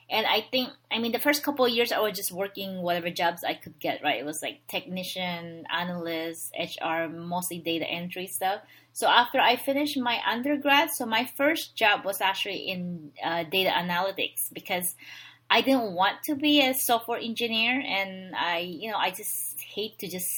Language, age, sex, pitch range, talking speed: English, 20-39, female, 185-255 Hz, 190 wpm